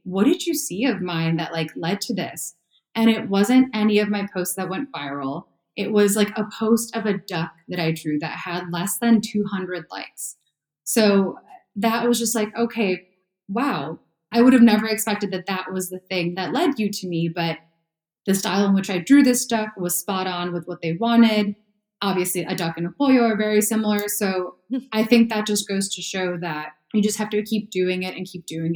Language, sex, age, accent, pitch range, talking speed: English, female, 20-39, American, 175-215 Hz, 215 wpm